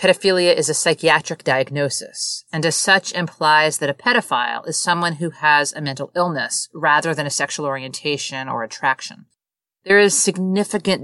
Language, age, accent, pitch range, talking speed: English, 40-59, American, 135-175 Hz, 160 wpm